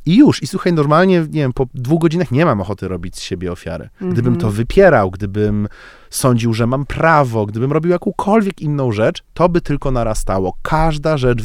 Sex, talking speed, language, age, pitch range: male, 190 wpm, Polish, 30-49, 100-135 Hz